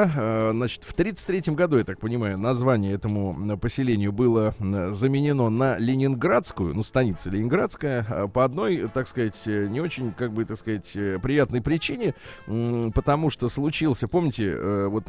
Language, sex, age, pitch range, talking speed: Russian, male, 20-39, 105-135 Hz, 130 wpm